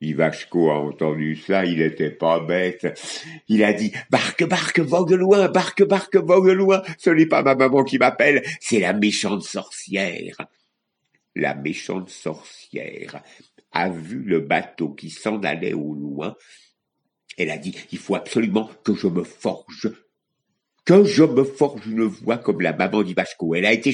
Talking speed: 170 wpm